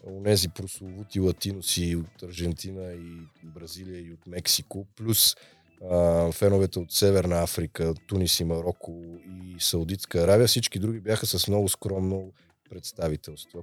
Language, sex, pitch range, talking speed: Bulgarian, male, 85-105 Hz, 130 wpm